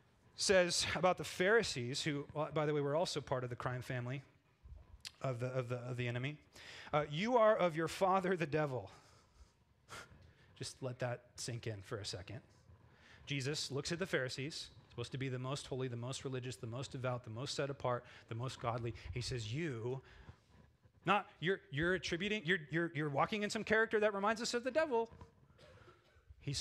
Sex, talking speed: male, 185 wpm